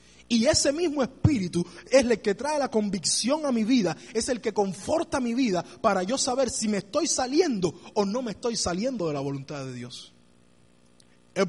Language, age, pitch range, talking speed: Spanish, 20-39, 180-255 Hz, 195 wpm